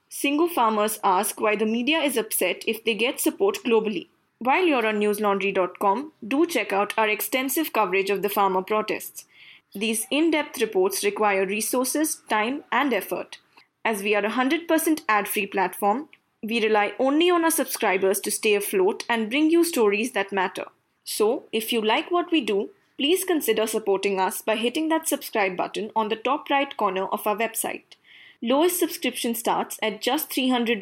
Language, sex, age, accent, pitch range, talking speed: English, female, 20-39, Indian, 205-290 Hz, 170 wpm